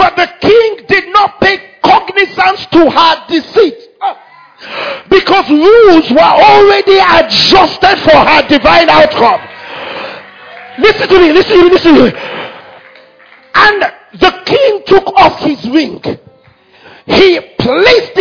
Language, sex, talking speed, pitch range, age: English, male, 120 wpm, 320-400 Hz, 50-69